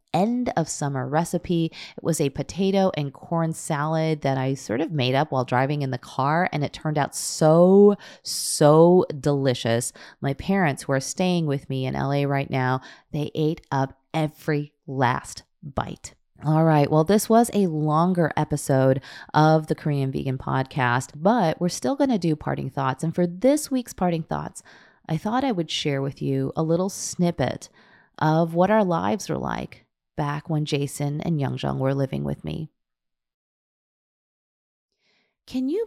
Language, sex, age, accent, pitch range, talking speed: English, female, 30-49, American, 140-170 Hz, 165 wpm